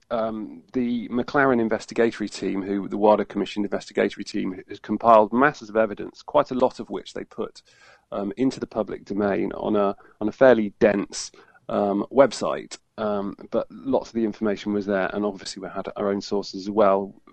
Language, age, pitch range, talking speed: English, 40-59, 100-115 Hz, 185 wpm